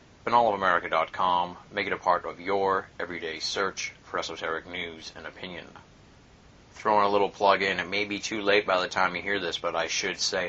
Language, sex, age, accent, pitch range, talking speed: English, male, 30-49, American, 85-95 Hz, 195 wpm